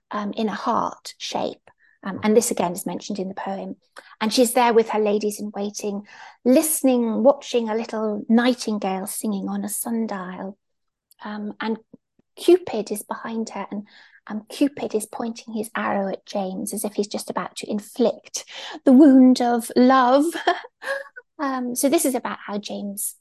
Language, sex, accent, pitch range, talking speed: English, female, British, 210-260 Hz, 160 wpm